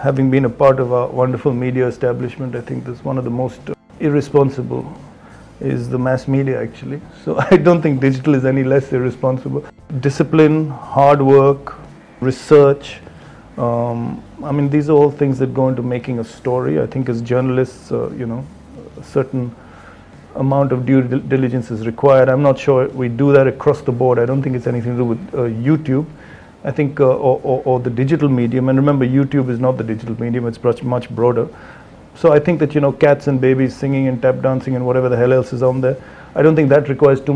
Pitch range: 125-140 Hz